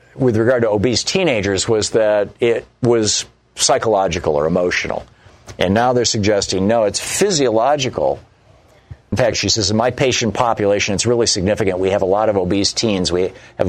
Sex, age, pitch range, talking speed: male, 50-69, 95-115 Hz, 170 wpm